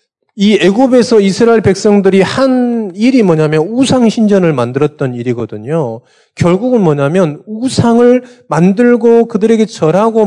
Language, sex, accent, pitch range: Korean, male, native, 170-235 Hz